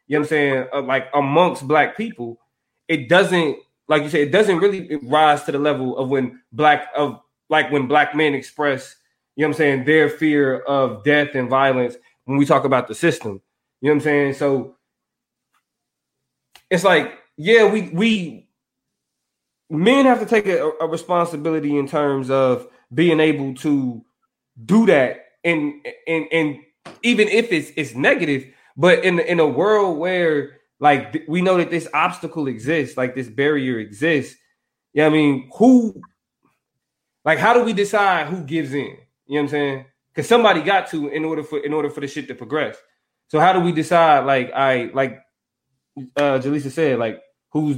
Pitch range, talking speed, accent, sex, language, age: 135-165 Hz, 180 wpm, American, male, English, 20-39